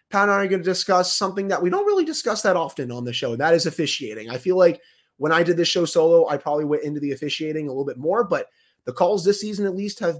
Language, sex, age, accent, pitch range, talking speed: English, male, 30-49, American, 135-180 Hz, 290 wpm